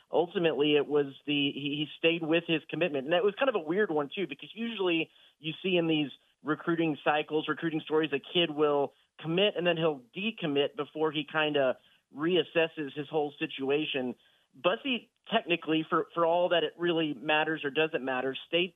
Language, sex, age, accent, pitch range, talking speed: English, male, 40-59, American, 140-165 Hz, 180 wpm